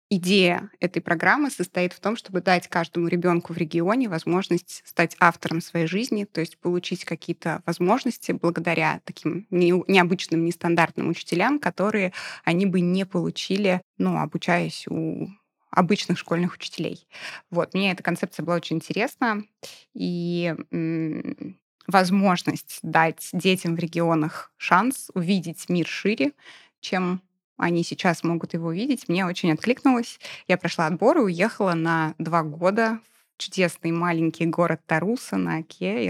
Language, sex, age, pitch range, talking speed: Russian, female, 20-39, 165-195 Hz, 135 wpm